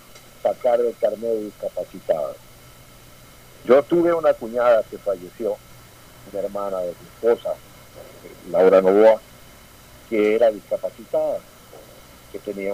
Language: Spanish